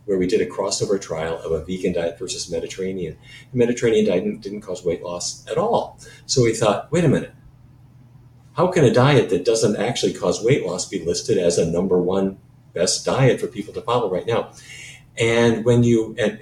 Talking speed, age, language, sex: 205 wpm, 50-69, English, male